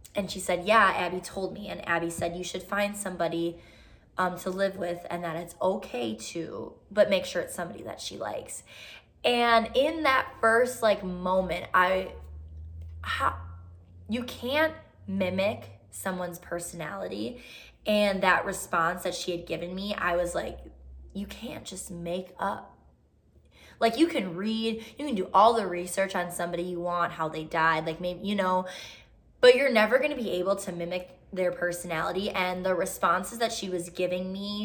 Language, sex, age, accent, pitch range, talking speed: English, female, 20-39, American, 175-210 Hz, 170 wpm